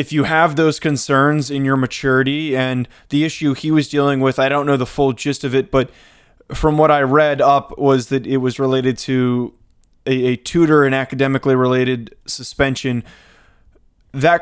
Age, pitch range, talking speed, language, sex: 20-39, 125-145 Hz, 180 wpm, English, male